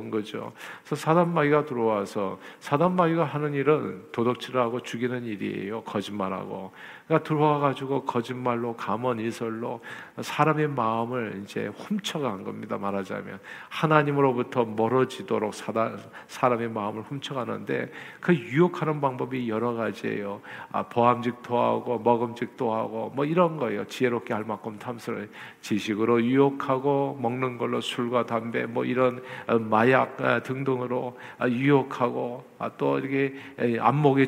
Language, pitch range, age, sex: Korean, 120-150 Hz, 50-69, male